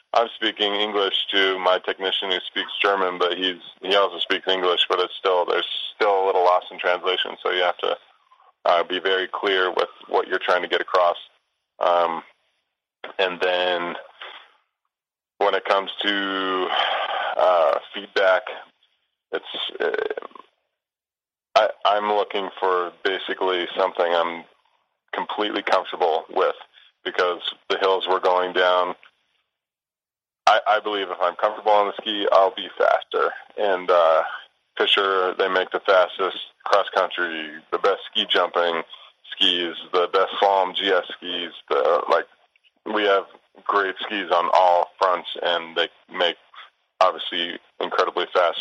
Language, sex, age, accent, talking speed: English, male, 20-39, American, 140 wpm